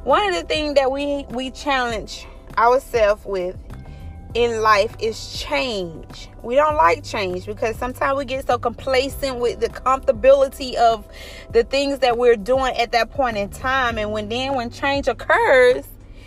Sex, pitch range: female, 215-275 Hz